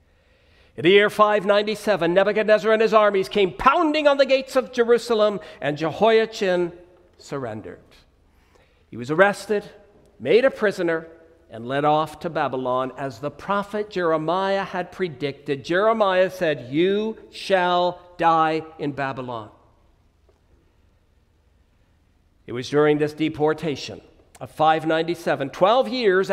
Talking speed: 115 wpm